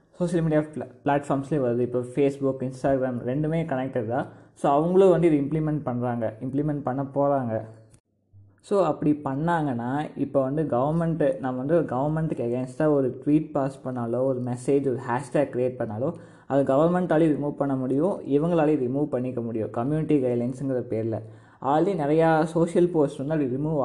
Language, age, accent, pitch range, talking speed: Tamil, 20-39, native, 125-155 Hz, 150 wpm